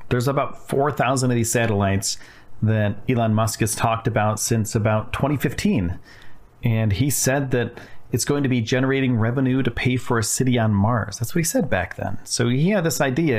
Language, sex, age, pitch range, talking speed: English, male, 40-59, 105-135 Hz, 195 wpm